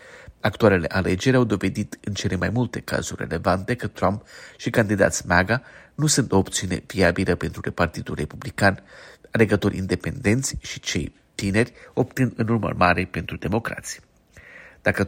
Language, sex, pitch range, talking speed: Romanian, male, 90-120 Hz, 135 wpm